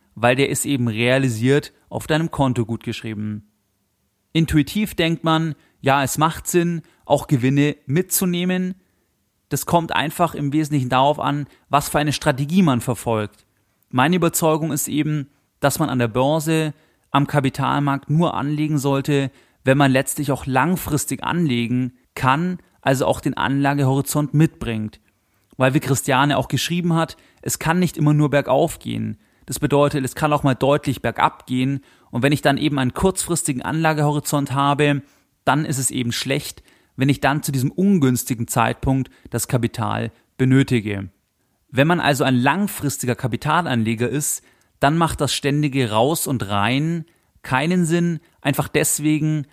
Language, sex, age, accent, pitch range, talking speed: German, male, 30-49, German, 125-150 Hz, 150 wpm